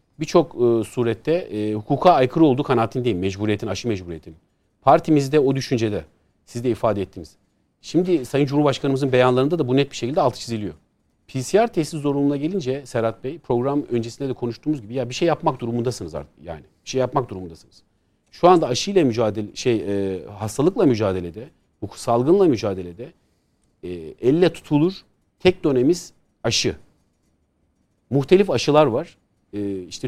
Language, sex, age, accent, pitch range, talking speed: Turkish, male, 40-59, native, 110-145 Hz, 145 wpm